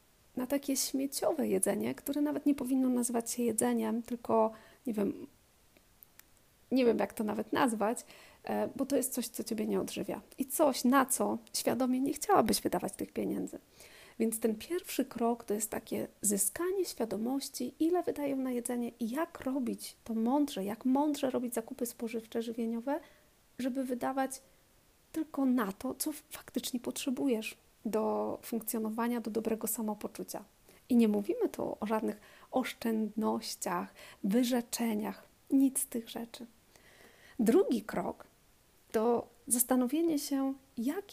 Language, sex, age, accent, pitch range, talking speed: Polish, female, 40-59, native, 230-280 Hz, 135 wpm